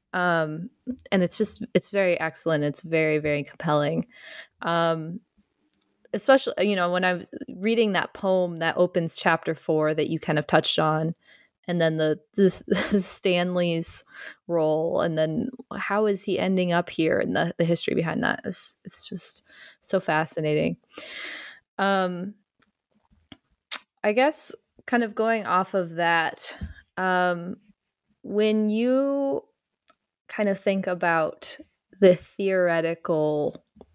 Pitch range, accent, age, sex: 165-205 Hz, American, 20-39, female